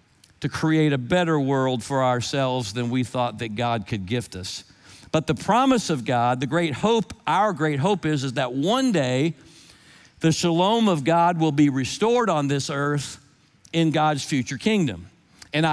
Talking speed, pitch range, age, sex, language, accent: 175 wpm, 135-190 Hz, 50-69, male, English, American